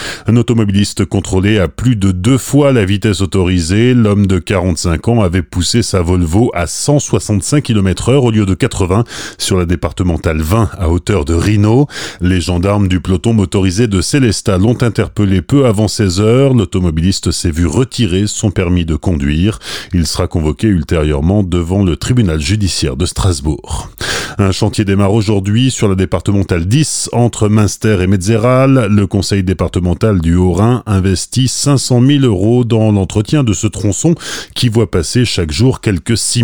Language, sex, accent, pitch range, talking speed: French, male, French, 90-115 Hz, 160 wpm